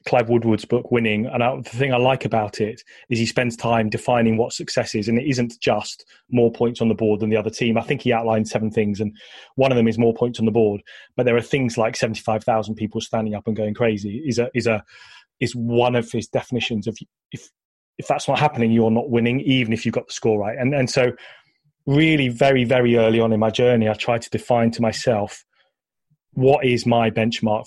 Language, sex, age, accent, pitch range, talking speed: English, male, 30-49, British, 110-125 Hz, 230 wpm